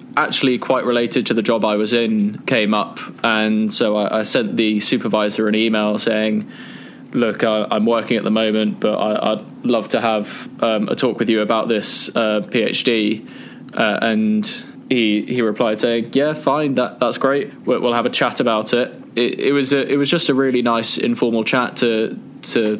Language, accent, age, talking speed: English, British, 20-39, 190 wpm